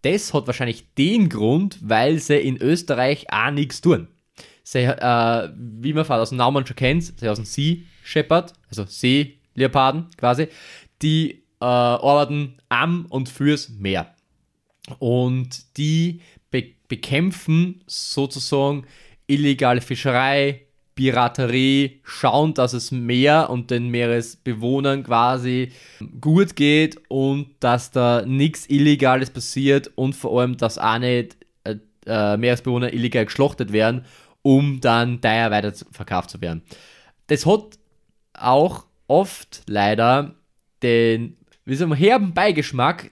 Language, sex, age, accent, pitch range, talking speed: German, male, 20-39, German, 120-145 Hz, 120 wpm